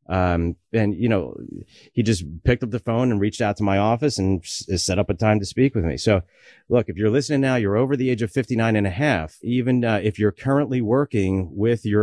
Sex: male